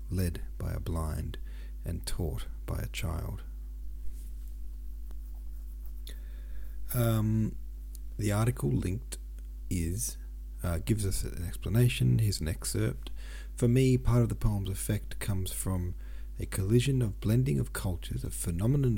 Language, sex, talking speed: English, male, 125 wpm